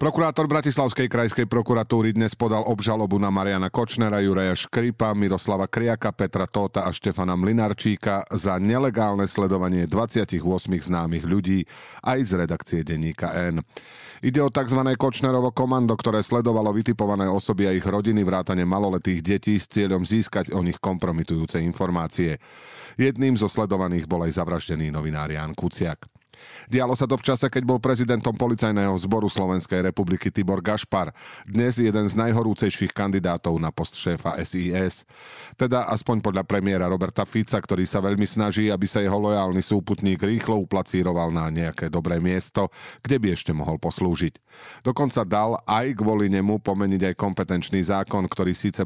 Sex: male